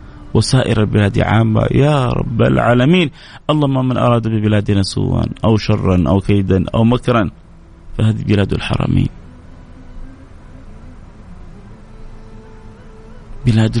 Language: Arabic